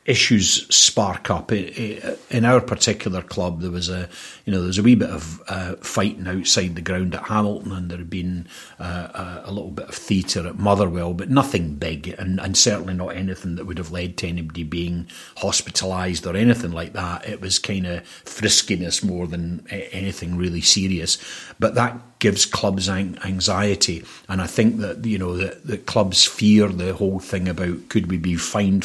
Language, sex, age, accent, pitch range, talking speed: English, male, 40-59, British, 90-105 Hz, 185 wpm